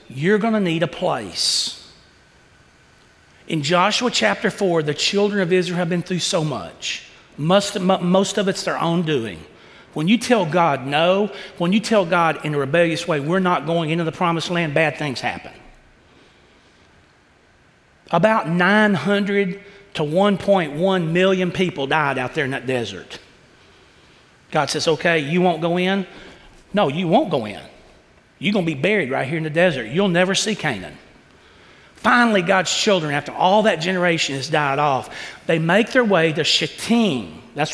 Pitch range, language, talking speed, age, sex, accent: 165-205 Hz, English, 165 wpm, 40-59, male, American